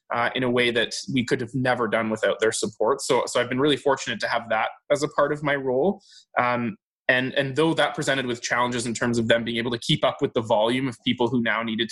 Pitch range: 115-135 Hz